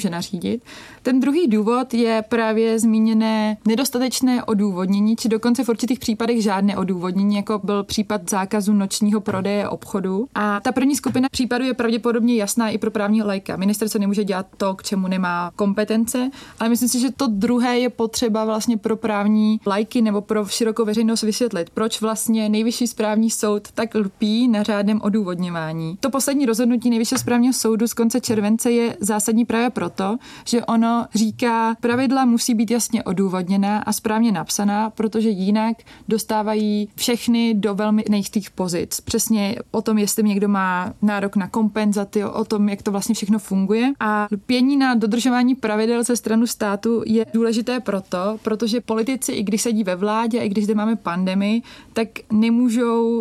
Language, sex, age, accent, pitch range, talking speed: Czech, female, 20-39, native, 210-235 Hz, 165 wpm